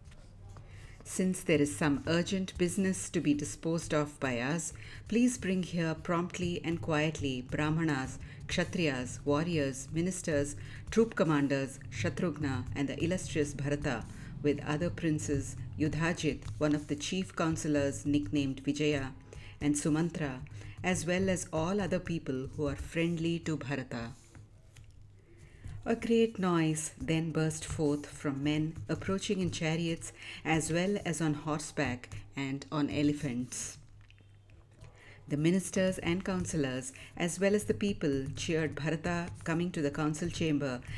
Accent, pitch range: Indian, 130-165 Hz